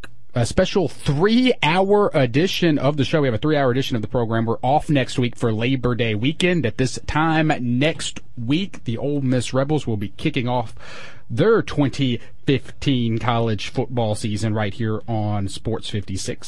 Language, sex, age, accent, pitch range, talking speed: English, male, 40-59, American, 115-150 Hz, 170 wpm